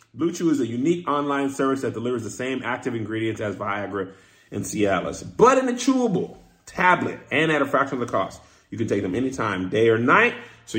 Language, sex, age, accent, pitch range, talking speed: English, male, 30-49, American, 105-175 Hz, 210 wpm